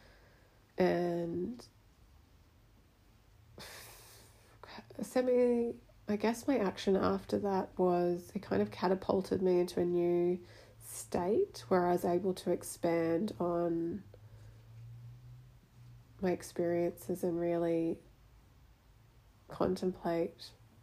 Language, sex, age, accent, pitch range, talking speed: English, female, 20-39, Australian, 120-190 Hz, 85 wpm